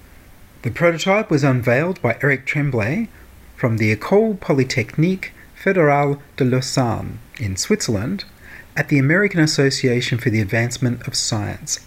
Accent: Australian